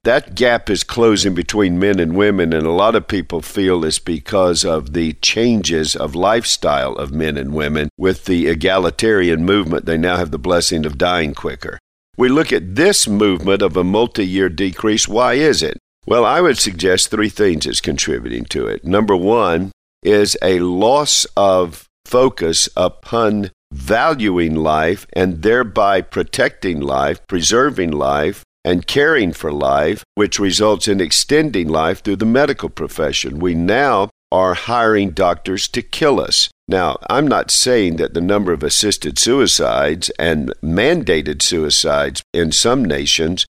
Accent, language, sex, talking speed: American, English, male, 155 wpm